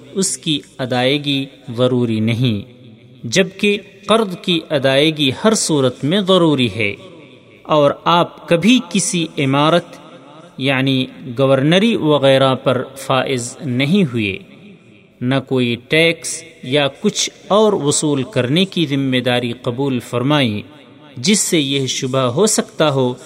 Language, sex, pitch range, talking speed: Urdu, male, 130-175 Hz, 120 wpm